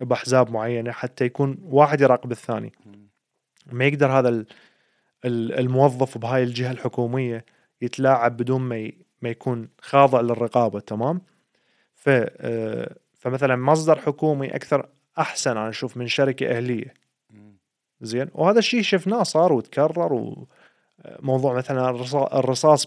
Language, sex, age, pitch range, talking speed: Arabic, male, 30-49, 120-145 Hz, 110 wpm